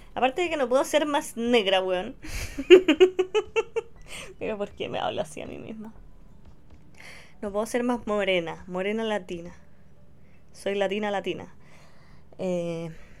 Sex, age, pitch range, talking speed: female, 20-39, 190-245 Hz, 130 wpm